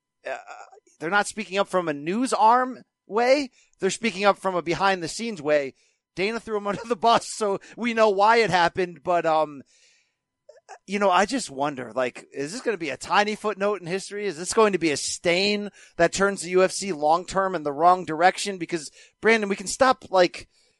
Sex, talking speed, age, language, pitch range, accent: male, 205 wpm, 40-59, English, 165-210 Hz, American